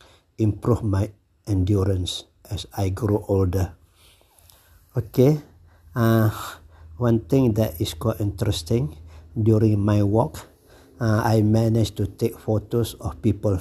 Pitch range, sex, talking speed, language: 100-110 Hz, male, 115 wpm, English